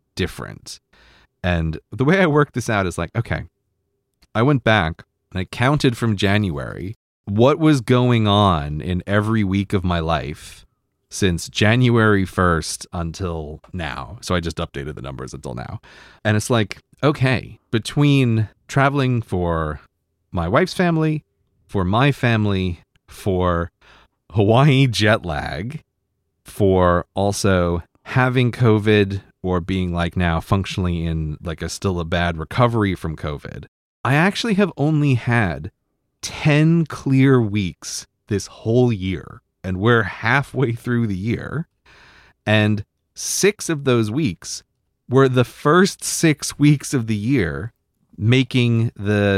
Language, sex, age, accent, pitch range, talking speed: English, male, 30-49, American, 90-125 Hz, 130 wpm